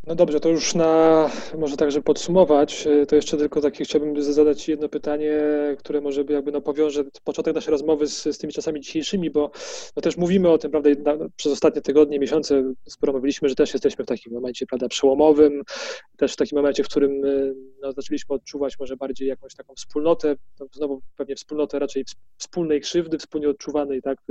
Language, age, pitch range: Polish, 20-39, 140-155 Hz